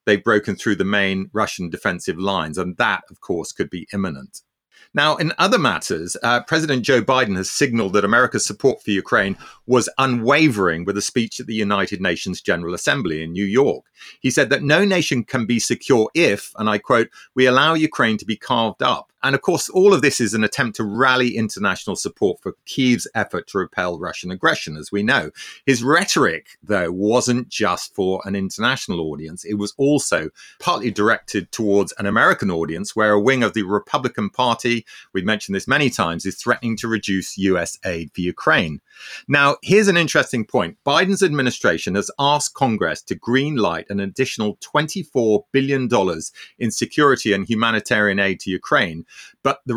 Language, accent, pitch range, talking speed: English, British, 100-135 Hz, 180 wpm